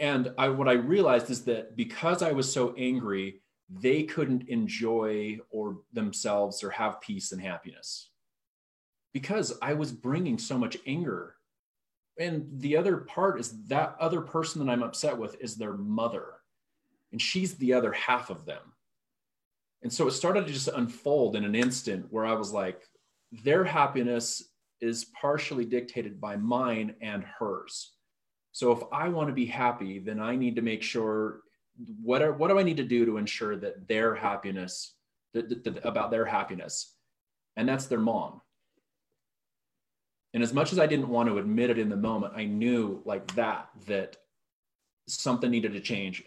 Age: 30-49